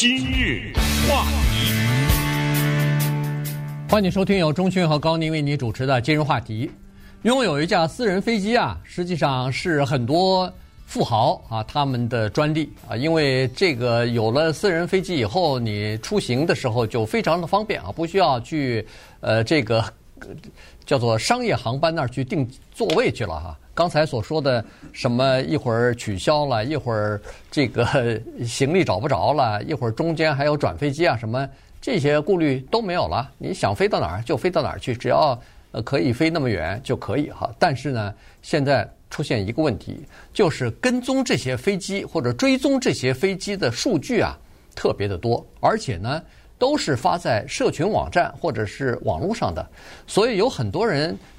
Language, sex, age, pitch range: Chinese, male, 50-69, 115-165 Hz